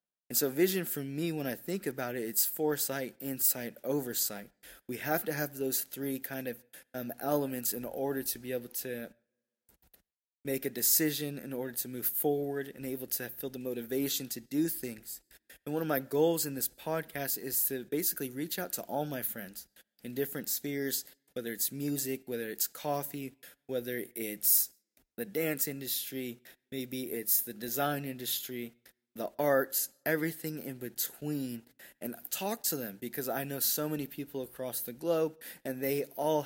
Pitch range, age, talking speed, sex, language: 125-145 Hz, 20-39, 170 wpm, male, English